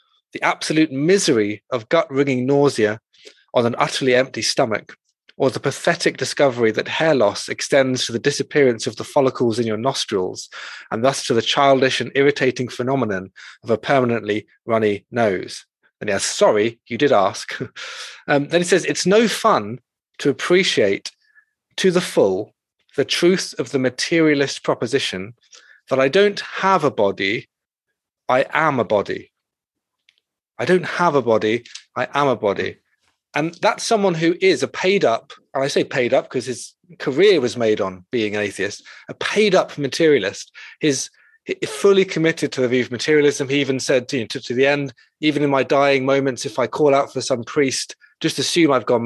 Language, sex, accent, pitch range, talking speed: English, male, British, 120-155 Hz, 175 wpm